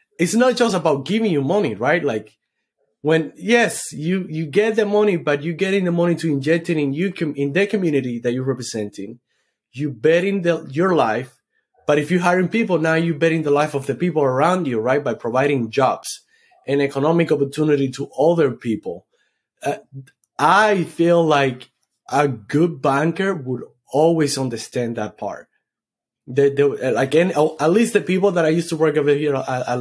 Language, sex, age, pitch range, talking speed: English, male, 30-49, 130-165 Hz, 175 wpm